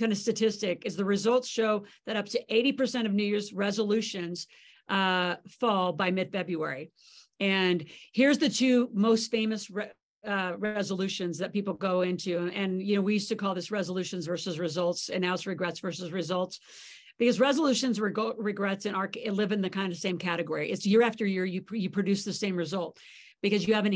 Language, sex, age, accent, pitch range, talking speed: English, female, 50-69, American, 180-210 Hz, 195 wpm